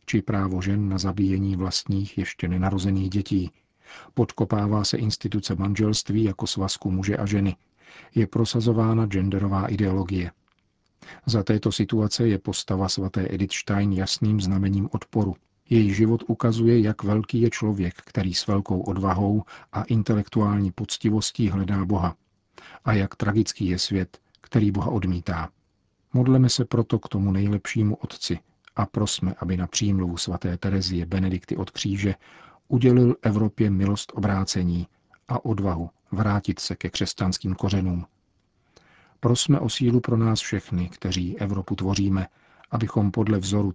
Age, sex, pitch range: 50-69, male, 95-110 Hz